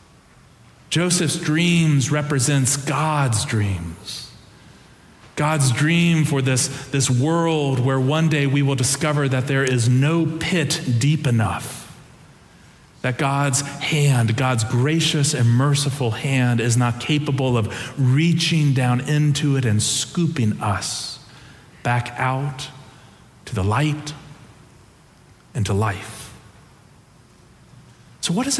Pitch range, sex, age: 125-160 Hz, male, 40-59